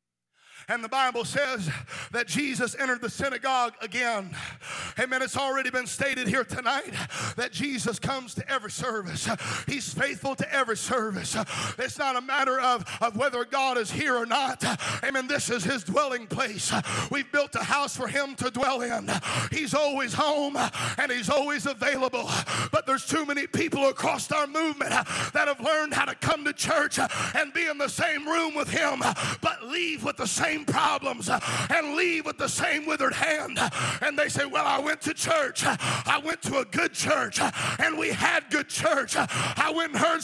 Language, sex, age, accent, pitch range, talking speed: English, male, 40-59, American, 250-310 Hz, 180 wpm